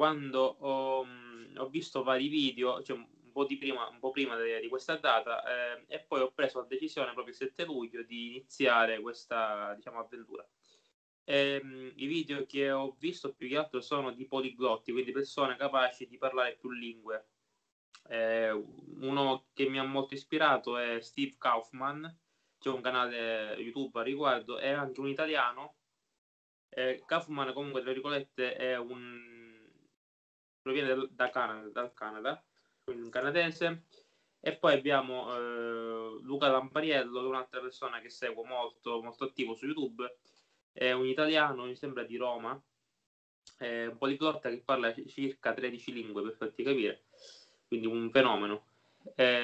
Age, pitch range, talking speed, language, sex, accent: 20-39, 120-140 Hz, 150 wpm, Italian, male, native